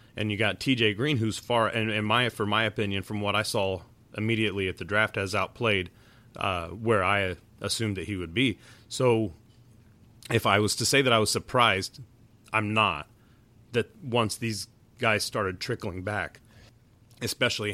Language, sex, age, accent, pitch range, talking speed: English, male, 30-49, American, 95-115 Hz, 175 wpm